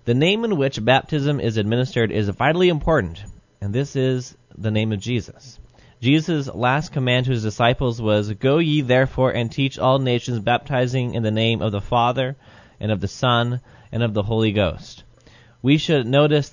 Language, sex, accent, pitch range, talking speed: English, male, American, 105-135 Hz, 180 wpm